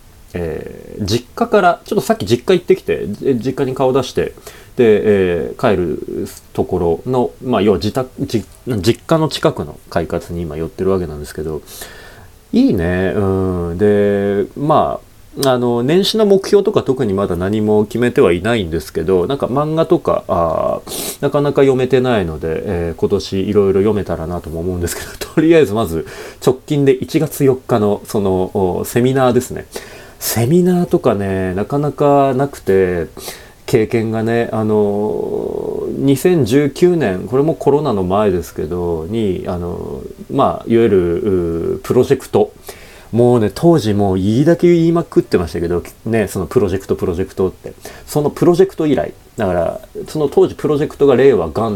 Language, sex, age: Japanese, male, 30-49